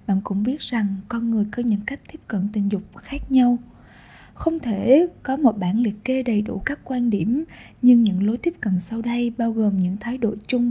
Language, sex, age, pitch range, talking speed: Vietnamese, female, 10-29, 205-255 Hz, 225 wpm